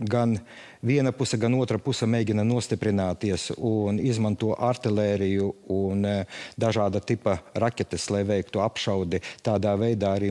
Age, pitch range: 50-69, 100-120 Hz